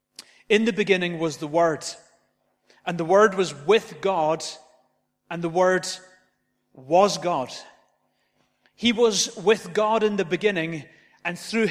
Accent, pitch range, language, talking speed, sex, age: British, 145-190 Hz, English, 135 wpm, male, 30-49